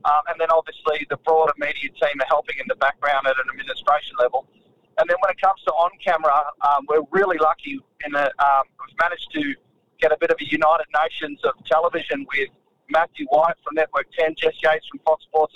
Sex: male